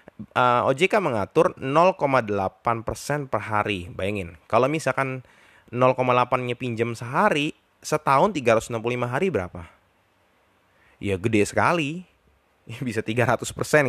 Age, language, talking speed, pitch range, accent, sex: 20-39, Indonesian, 105 wpm, 100-130 Hz, native, male